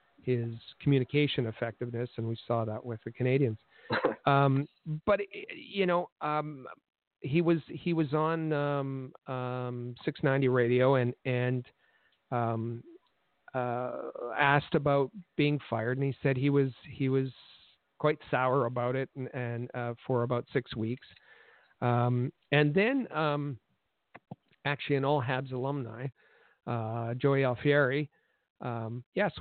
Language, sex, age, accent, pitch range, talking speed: English, male, 50-69, American, 125-155 Hz, 130 wpm